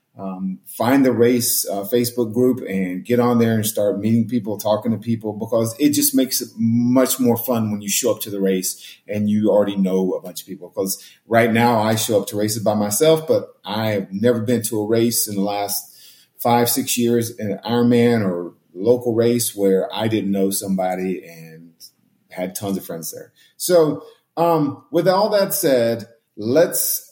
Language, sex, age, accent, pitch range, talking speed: English, male, 40-59, American, 100-125 Hz, 195 wpm